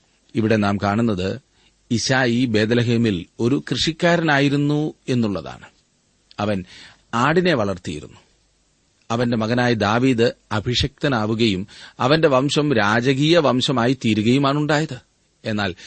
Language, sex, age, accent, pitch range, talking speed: Malayalam, male, 40-59, native, 100-130 Hz, 85 wpm